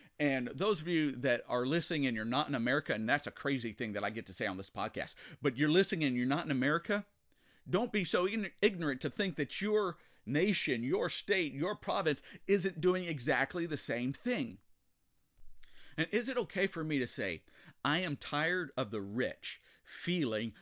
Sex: male